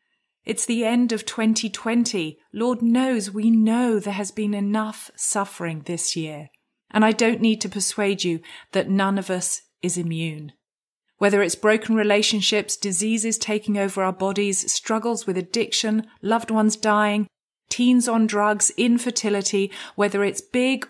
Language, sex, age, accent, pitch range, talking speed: English, female, 30-49, British, 180-230 Hz, 145 wpm